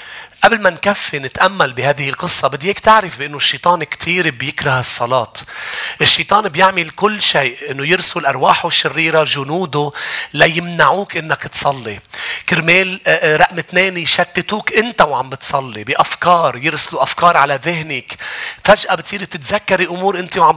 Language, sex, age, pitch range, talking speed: English, male, 40-59, 145-180 Hz, 125 wpm